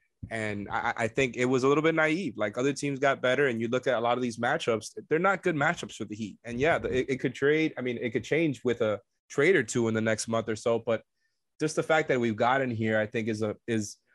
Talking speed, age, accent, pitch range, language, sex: 285 wpm, 20-39, American, 110-130 Hz, English, male